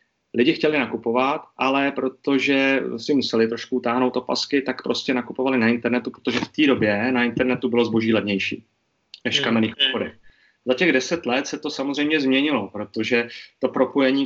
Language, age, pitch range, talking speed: Czech, 30-49, 115-130 Hz, 160 wpm